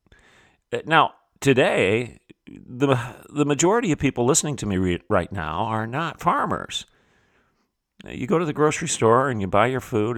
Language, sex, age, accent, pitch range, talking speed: English, male, 50-69, American, 90-120 Hz, 155 wpm